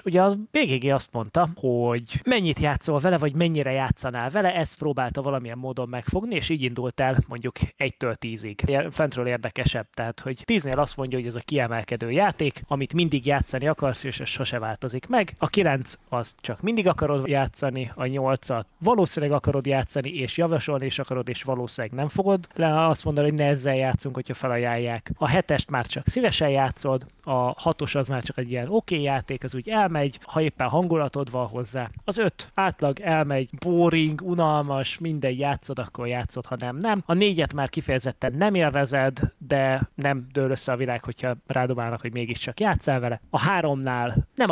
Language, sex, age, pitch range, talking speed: Hungarian, male, 20-39, 125-155 Hz, 180 wpm